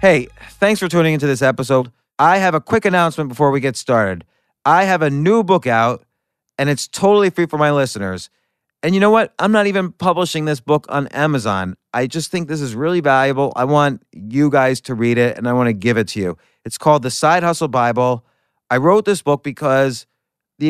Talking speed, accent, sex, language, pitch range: 215 wpm, American, male, English, 120-155 Hz